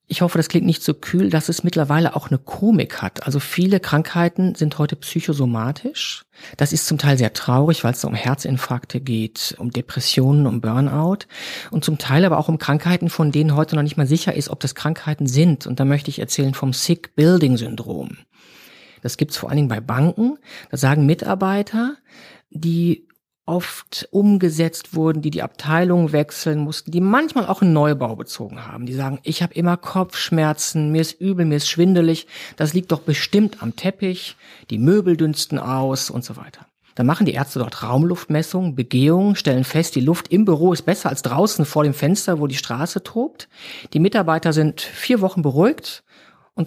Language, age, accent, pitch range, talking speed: German, 50-69, German, 140-180 Hz, 185 wpm